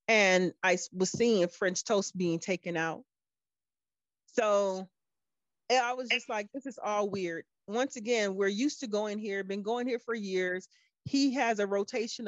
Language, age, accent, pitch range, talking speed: English, 30-49, American, 180-230 Hz, 170 wpm